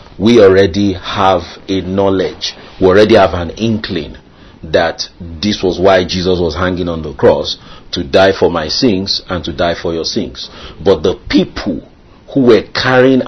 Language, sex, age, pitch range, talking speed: English, male, 40-59, 90-125 Hz, 165 wpm